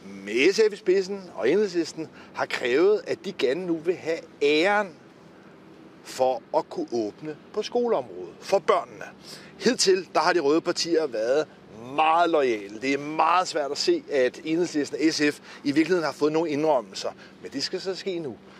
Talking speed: 170 wpm